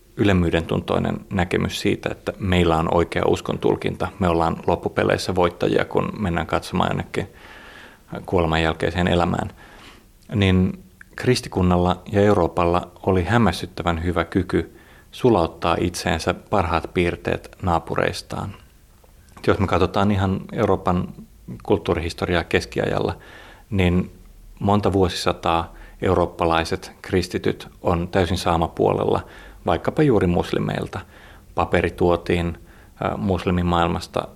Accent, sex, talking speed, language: native, male, 95 wpm, Finnish